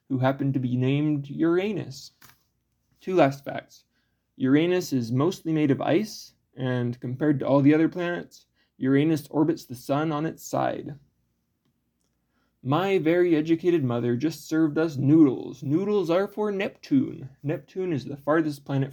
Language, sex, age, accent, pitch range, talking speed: English, male, 20-39, American, 130-160 Hz, 145 wpm